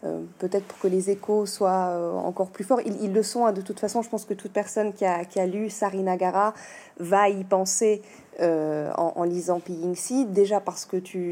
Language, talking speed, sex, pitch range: French, 230 wpm, female, 175-210 Hz